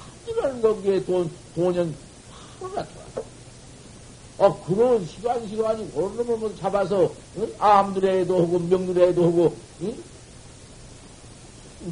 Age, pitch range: 60-79, 170-225 Hz